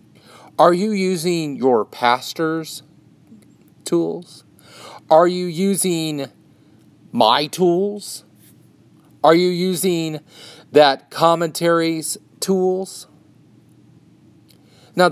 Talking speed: 70 wpm